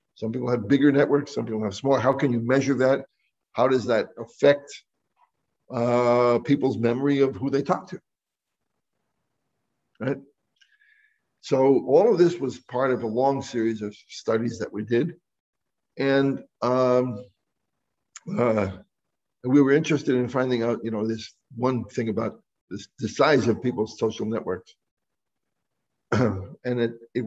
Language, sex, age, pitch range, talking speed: Spanish, male, 60-79, 115-140 Hz, 145 wpm